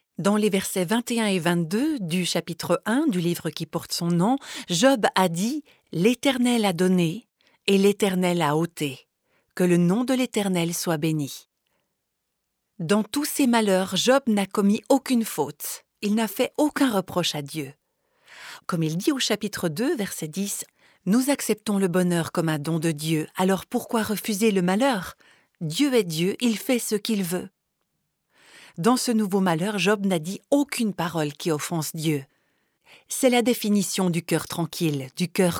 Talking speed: 165 wpm